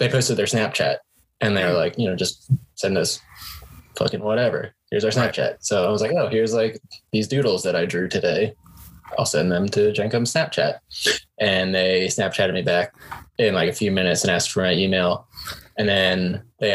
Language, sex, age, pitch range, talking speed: English, male, 20-39, 95-115 Hz, 195 wpm